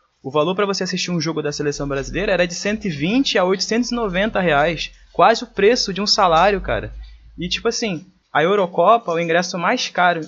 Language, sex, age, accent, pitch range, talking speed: Portuguese, male, 20-39, Brazilian, 155-205 Hz, 185 wpm